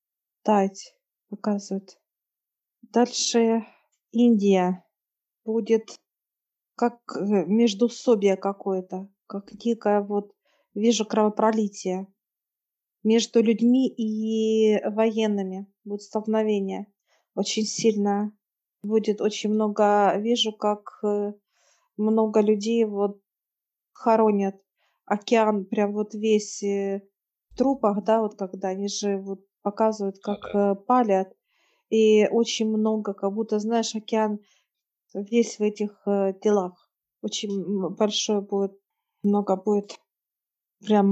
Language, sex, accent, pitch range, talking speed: Russian, female, native, 200-220 Hz, 90 wpm